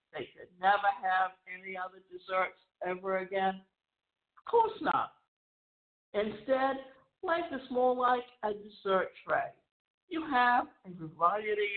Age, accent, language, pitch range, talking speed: 60-79, American, English, 210-320 Hz, 120 wpm